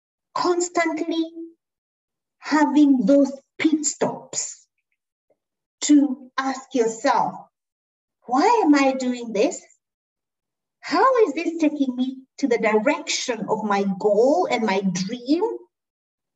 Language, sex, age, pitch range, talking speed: English, female, 50-69, 225-295 Hz, 100 wpm